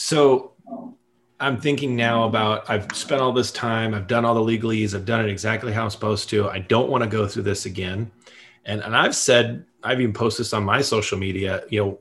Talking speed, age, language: 225 wpm, 30-49, English